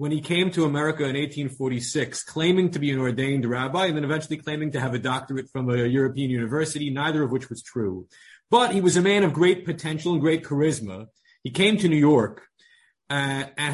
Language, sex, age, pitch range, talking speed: English, male, 30-49, 130-170 Hz, 210 wpm